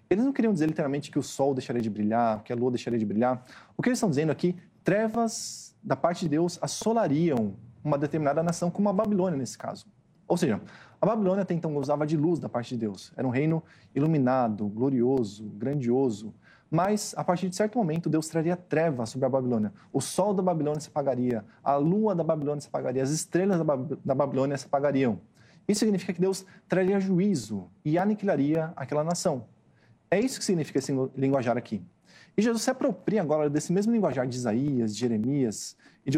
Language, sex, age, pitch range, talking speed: Portuguese, male, 20-39, 130-185 Hz, 195 wpm